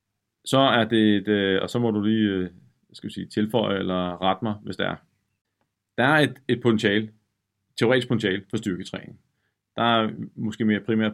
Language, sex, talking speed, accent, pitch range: Danish, male, 185 wpm, native, 100-115 Hz